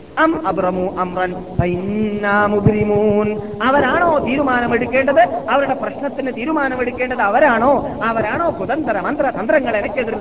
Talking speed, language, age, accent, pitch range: 65 wpm, Malayalam, 30-49, native, 200-255 Hz